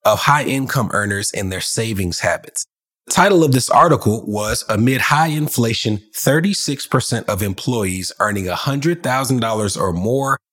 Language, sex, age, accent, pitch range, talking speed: English, male, 30-49, American, 100-130 Hz, 130 wpm